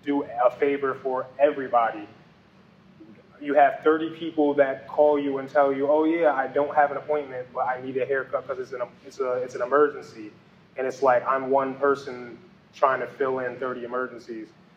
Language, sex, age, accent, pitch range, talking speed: English, male, 20-39, American, 125-150 Hz, 190 wpm